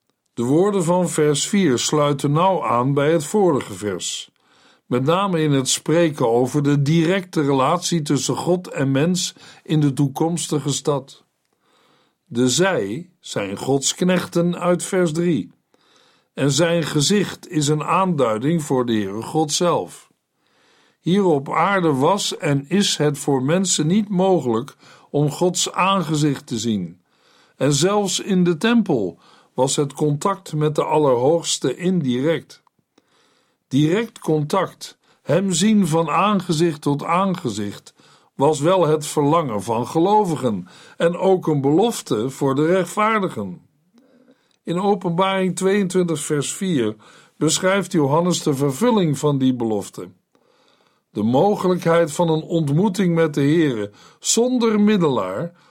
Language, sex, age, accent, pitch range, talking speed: Dutch, male, 50-69, Dutch, 145-185 Hz, 130 wpm